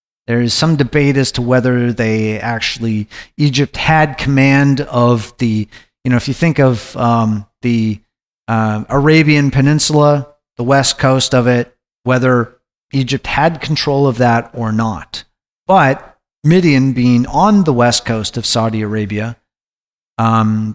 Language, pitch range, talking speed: English, 115-140 Hz, 140 wpm